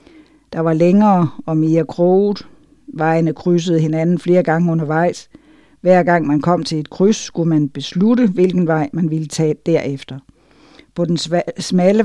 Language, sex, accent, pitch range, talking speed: Danish, female, native, 165-205 Hz, 155 wpm